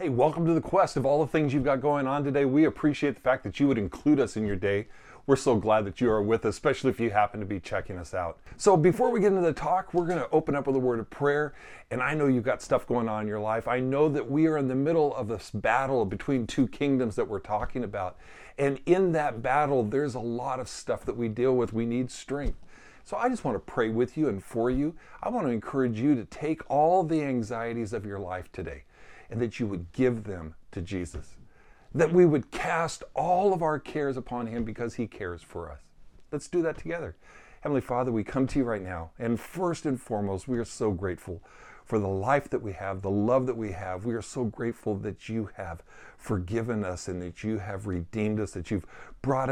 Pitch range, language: 105-140 Hz, English